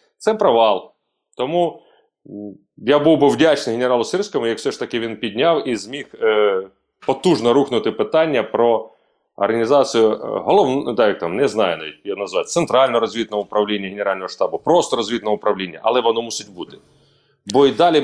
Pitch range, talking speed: 110-175 Hz, 155 wpm